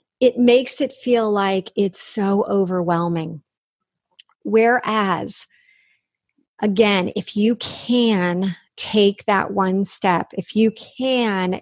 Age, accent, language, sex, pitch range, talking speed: 40-59, American, English, female, 185-225 Hz, 105 wpm